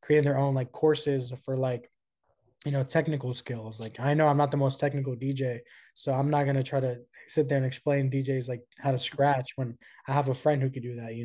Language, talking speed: English, 245 wpm